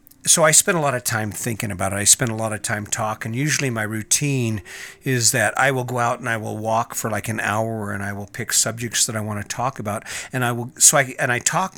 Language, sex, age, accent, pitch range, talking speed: English, male, 50-69, American, 105-130 Hz, 270 wpm